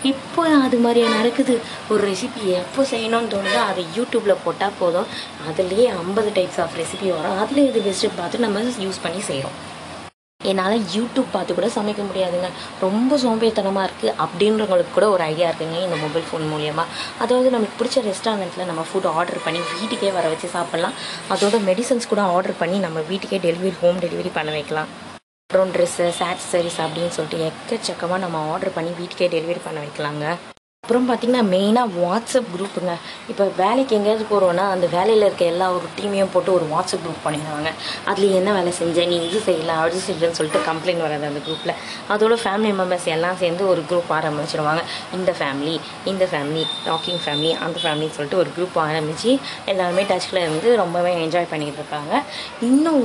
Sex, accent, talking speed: female, native, 165 wpm